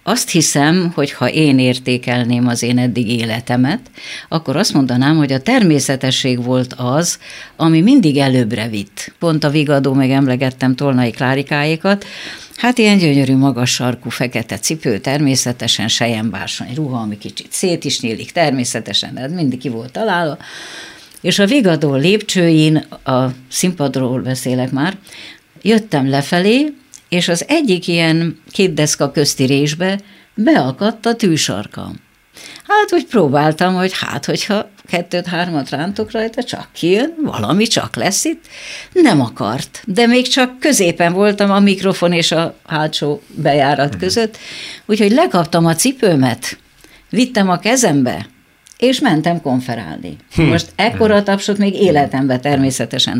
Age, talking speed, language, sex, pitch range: 50-69, 130 wpm, Hungarian, female, 130-200 Hz